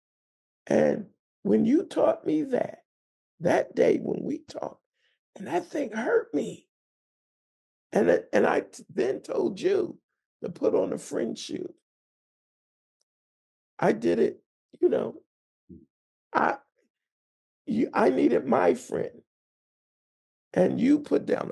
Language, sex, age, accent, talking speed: English, male, 50-69, American, 125 wpm